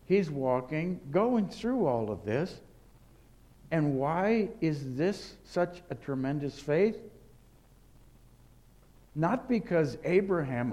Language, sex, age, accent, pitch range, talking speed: English, male, 60-79, American, 110-160 Hz, 100 wpm